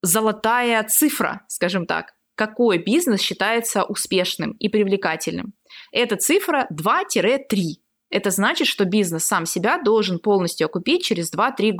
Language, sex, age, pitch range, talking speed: Russian, female, 20-39, 180-235 Hz, 120 wpm